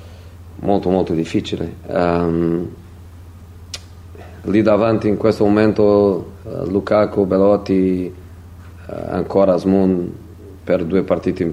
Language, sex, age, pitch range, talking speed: Italian, male, 40-59, 85-100 Hz, 100 wpm